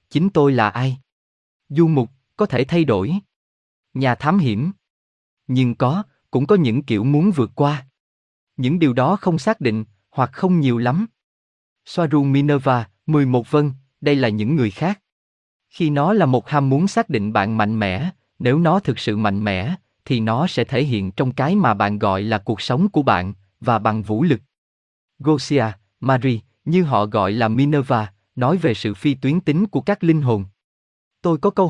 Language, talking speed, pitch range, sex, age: Vietnamese, 185 wpm, 110-155 Hz, male, 20-39